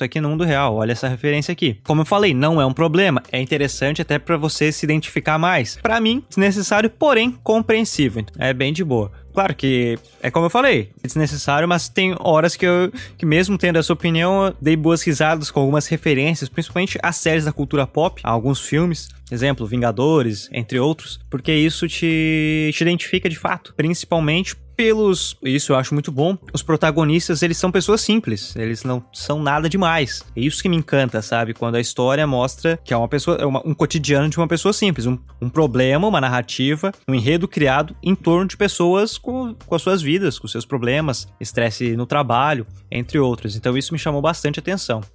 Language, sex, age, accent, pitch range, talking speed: Portuguese, male, 20-39, Brazilian, 130-175 Hz, 195 wpm